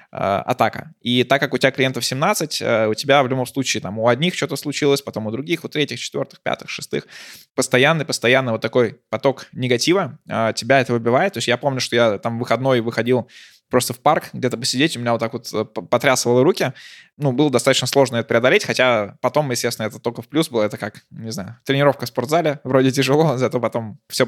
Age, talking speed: 20-39, 205 wpm